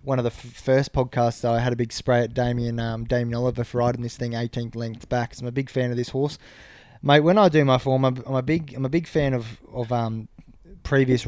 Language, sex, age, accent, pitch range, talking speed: English, male, 20-39, Australian, 120-130 Hz, 260 wpm